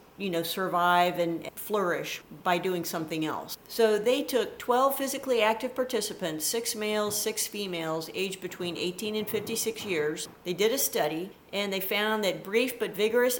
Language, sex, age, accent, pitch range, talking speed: English, female, 50-69, American, 175-220 Hz, 165 wpm